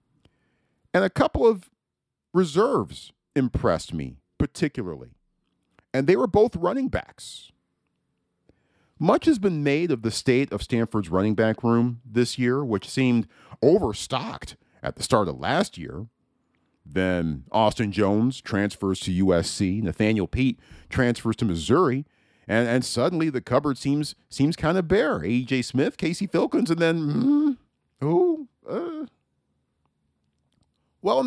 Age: 50-69